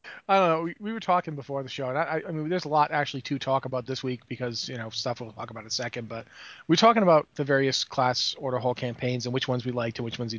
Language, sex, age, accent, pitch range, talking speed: English, male, 30-49, American, 130-190 Hz, 300 wpm